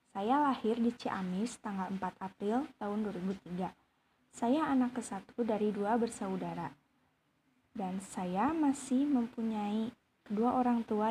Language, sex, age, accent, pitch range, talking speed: Indonesian, female, 20-39, native, 200-245 Hz, 120 wpm